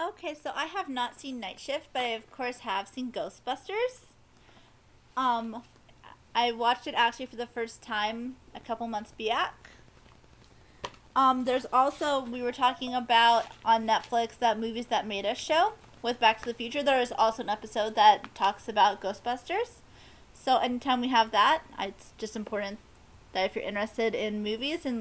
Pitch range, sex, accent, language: 220-270 Hz, female, American, English